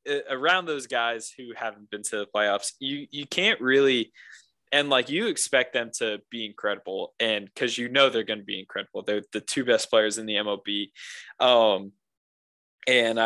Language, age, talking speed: English, 20-39, 180 wpm